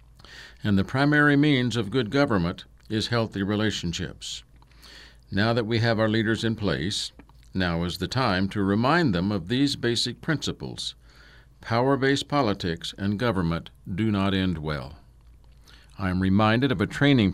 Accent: American